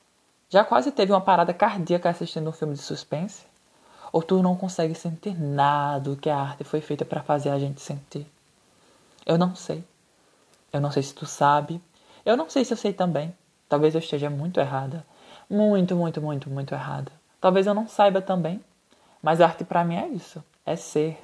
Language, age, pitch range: Portuguese, 20-39, 145-175 Hz